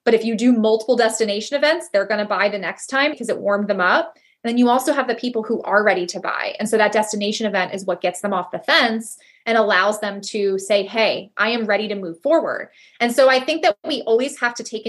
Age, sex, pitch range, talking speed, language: 20-39, female, 205-250 Hz, 260 wpm, English